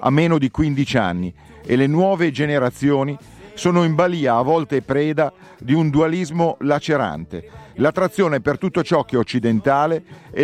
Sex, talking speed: male, 155 wpm